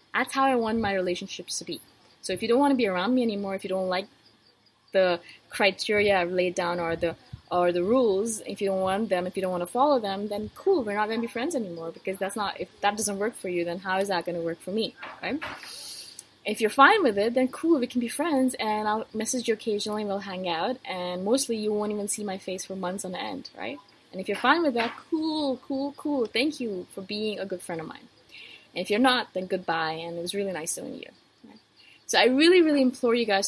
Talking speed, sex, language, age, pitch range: 250 wpm, female, English, 20-39, 185-250 Hz